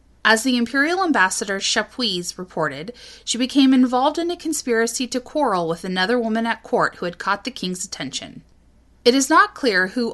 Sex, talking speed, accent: female, 180 wpm, American